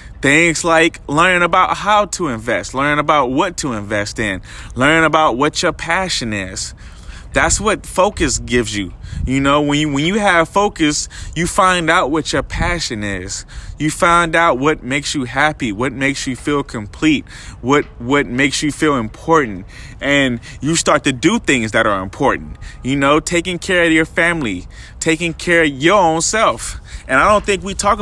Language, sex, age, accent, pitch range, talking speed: English, male, 20-39, American, 120-160 Hz, 180 wpm